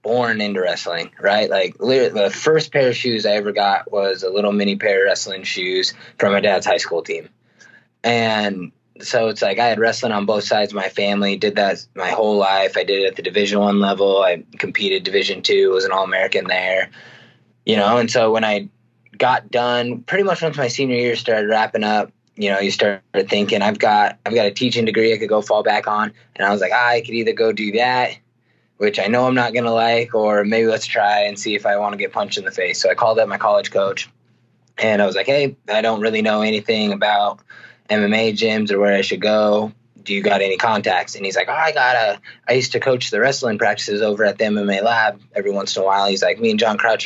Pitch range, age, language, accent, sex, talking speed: 100-120 Hz, 20-39, English, American, male, 240 wpm